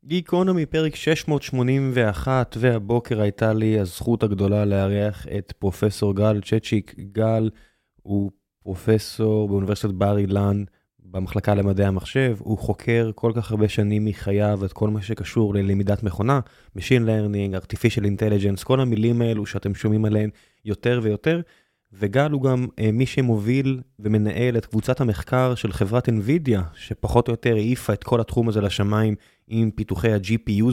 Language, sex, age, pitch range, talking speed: Hebrew, male, 20-39, 105-125 Hz, 140 wpm